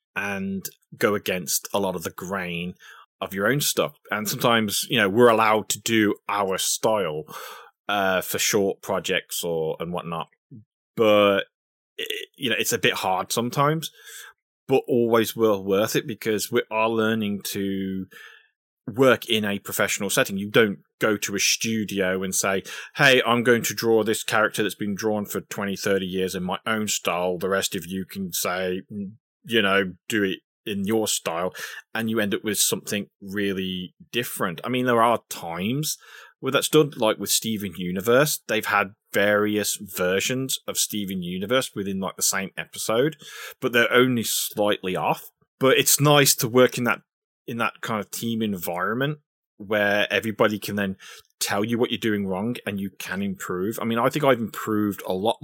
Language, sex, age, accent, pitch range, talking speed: English, male, 20-39, British, 100-120 Hz, 175 wpm